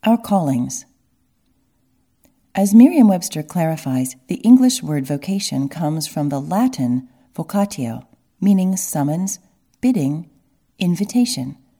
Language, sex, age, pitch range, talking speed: English, female, 40-59, 140-210 Hz, 95 wpm